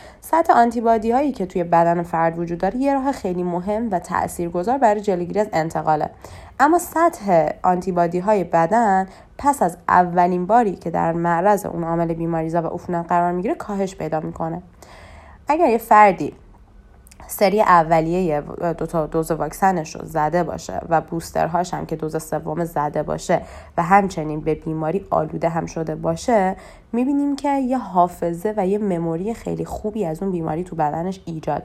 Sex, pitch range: female, 160-210 Hz